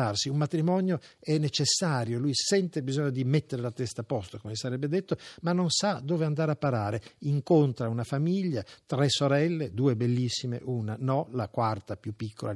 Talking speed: 175 wpm